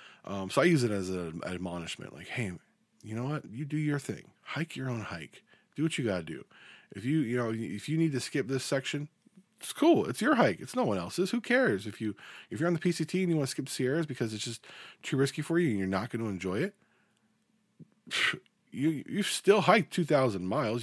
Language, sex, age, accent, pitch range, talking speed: English, male, 20-39, American, 100-165 Hz, 235 wpm